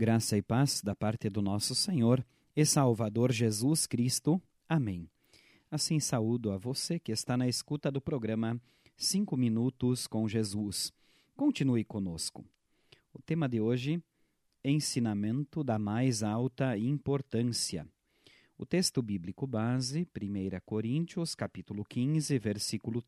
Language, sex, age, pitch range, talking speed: Portuguese, male, 40-59, 110-145 Hz, 120 wpm